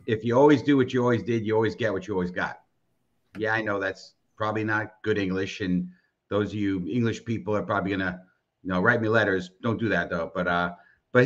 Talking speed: 235 wpm